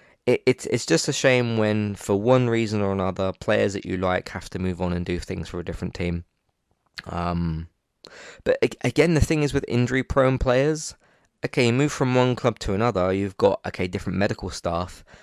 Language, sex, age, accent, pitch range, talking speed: English, male, 20-39, British, 95-120 Hz, 190 wpm